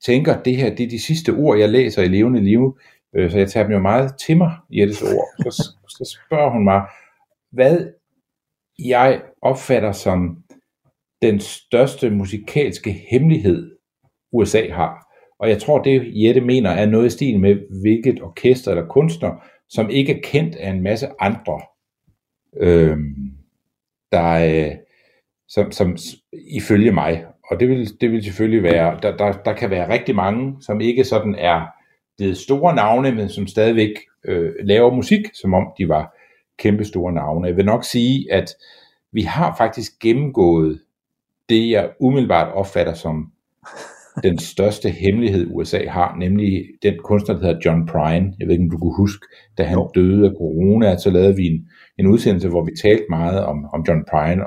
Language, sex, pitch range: Danish, male, 85-120 Hz